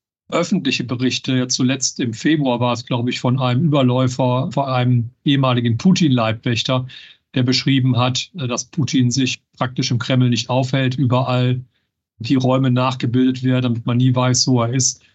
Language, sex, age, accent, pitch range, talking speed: German, male, 50-69, German, 125-140 Hz, 160 wpm